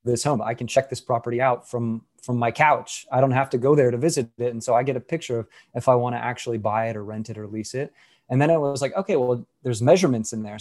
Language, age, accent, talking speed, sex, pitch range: English, 20-39, American, 295 wpm, male, 120-135 Hz